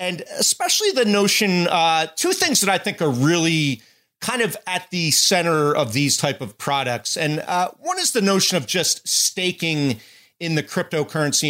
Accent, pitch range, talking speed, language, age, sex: American, 135-180 Hz, 180 wpm, English, 40-59, male